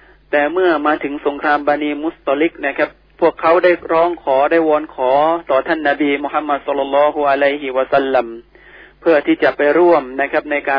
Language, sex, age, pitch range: Thai, male, 30-49, 140-160 Hz